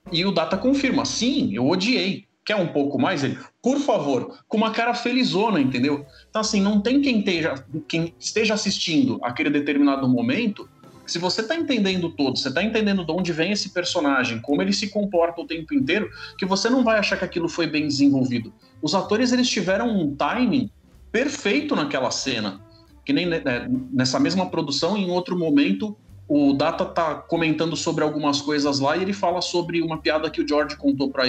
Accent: Brazilian